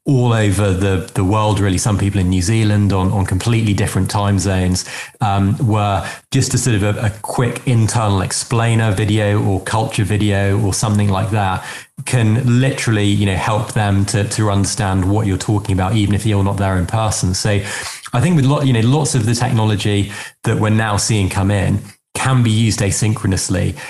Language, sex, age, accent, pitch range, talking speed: English, male, 20-39, British, 100-110 Hz, 195 wpm